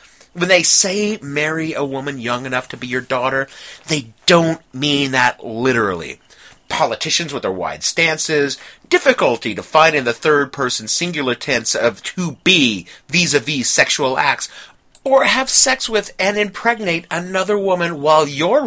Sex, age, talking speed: male, 30-49, 160 wpm